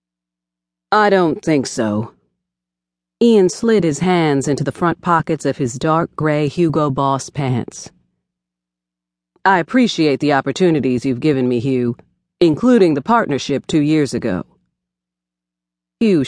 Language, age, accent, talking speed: English, 40-59, American, 125 wpm